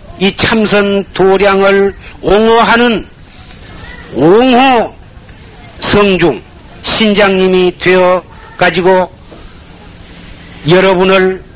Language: Korean